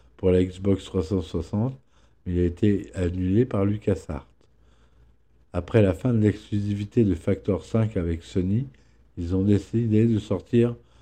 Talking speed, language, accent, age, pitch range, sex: 140 wpm, French, French, 50-69, 90-110 Hz, male